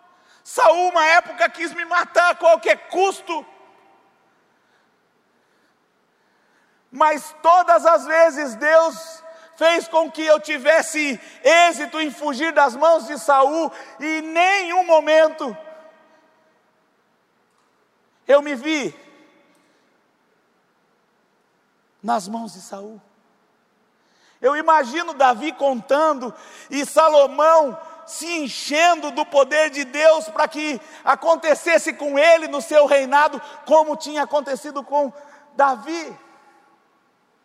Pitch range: 255-315 Hz